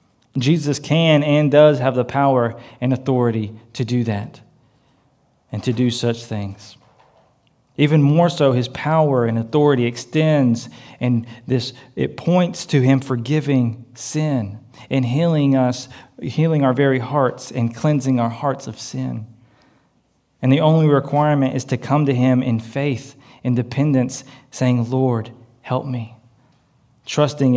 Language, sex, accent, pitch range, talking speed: English, male, American, 120-145 Hz, 140 wpm